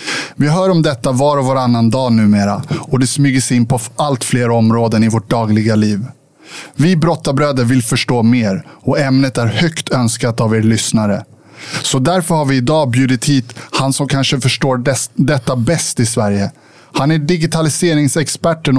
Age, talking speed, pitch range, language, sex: 20-39, 170 wpm, 120-150 Hz, Swedish, male